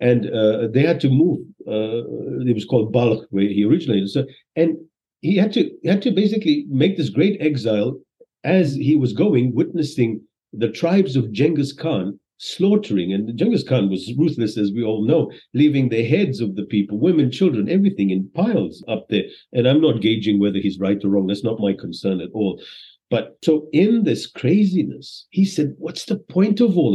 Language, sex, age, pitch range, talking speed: Hindi, male, 50-69, 115-185 Hz, 195 wpm